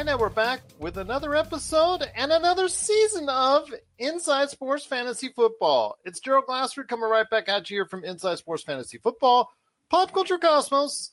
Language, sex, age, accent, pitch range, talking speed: English, male, 40-59, American, 180-280 Hz, 165 wpm